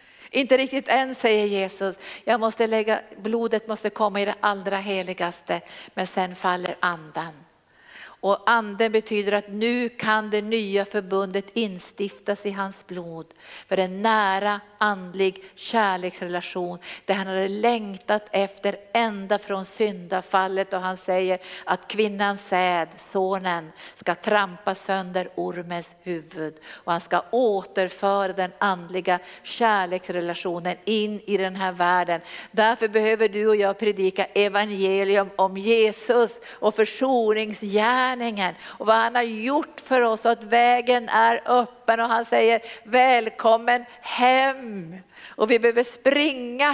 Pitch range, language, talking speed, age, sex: 190-230 Hz, Swedish, 125 wpm, 50-69, female